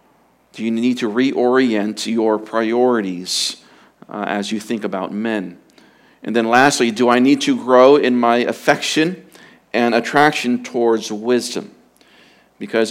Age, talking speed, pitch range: 40-59, 135 wpm, 105-125 Hz